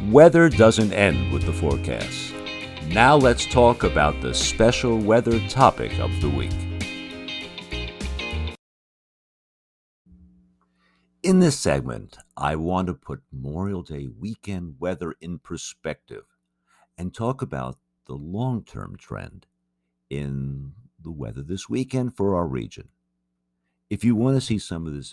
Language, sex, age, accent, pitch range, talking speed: English, male, 50-69, American, 65-105 Hz, 125 wpm